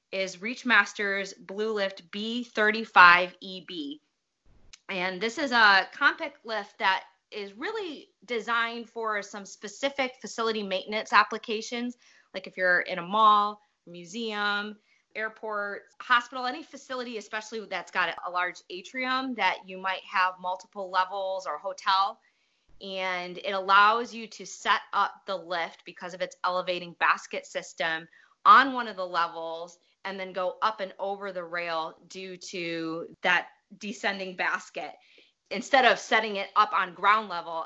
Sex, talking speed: female, 140 wpm